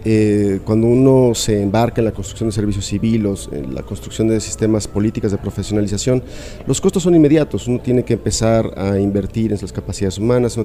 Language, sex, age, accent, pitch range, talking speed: Spanish, male, 40-59, Mexican, 100-125 Hz, 190 wpm